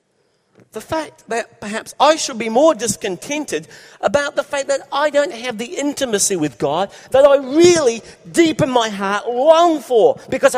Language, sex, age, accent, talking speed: English, male, 50-69, British, 170 wpm